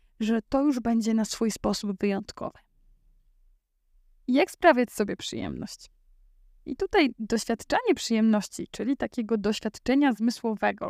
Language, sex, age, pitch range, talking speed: Polish, female, 20-39, 210-250 Hz, 110 wpm